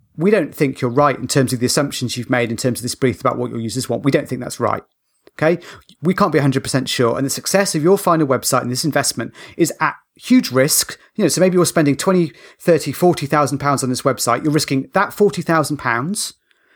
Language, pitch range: English, 130-170 Hz